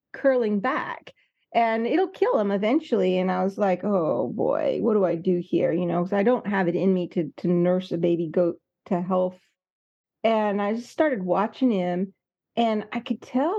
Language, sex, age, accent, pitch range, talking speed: English, female, 40-59, American, 195-265 Hz, 200 wpm